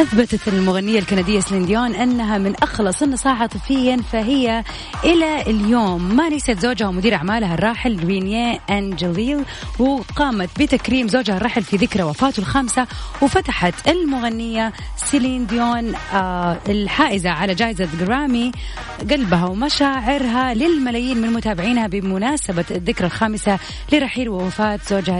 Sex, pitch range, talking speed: female, 195-255 Hz, 115 wpm